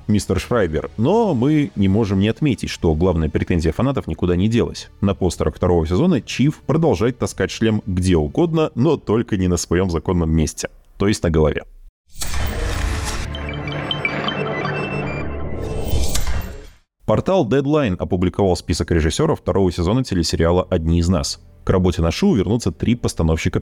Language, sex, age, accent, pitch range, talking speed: Russian, male, 20-39, native, 80-105 Hz, 135 wpm